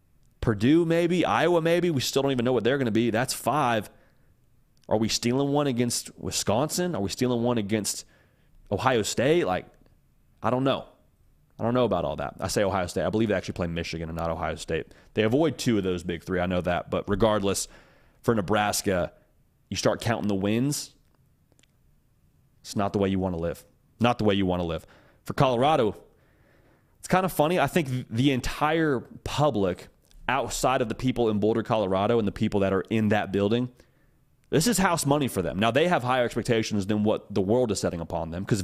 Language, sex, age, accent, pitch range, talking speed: English, male, 30-49, American, 100-130 Hz, 205 wpm